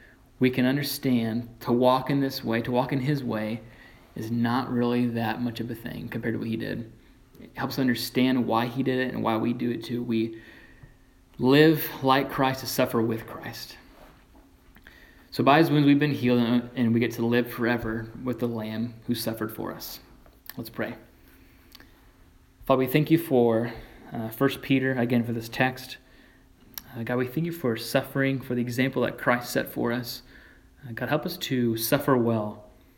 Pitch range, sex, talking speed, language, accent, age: 115-130 Hz, male, 185 wpm, English, American, 20-39